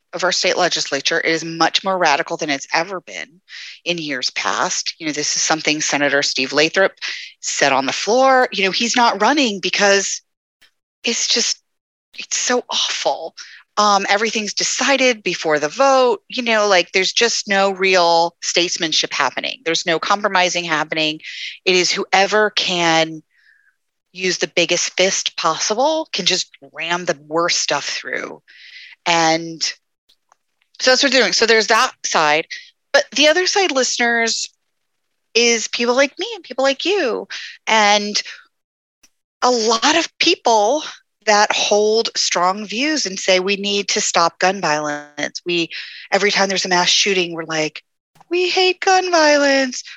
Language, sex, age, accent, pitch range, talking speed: English, female, 30-49, American, 170-255 Hz, 150 wpm